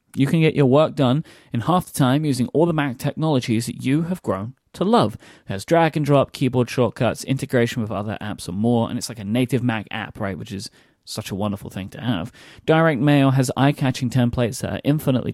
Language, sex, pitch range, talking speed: English, male, 115-145 Hz, 225 wpm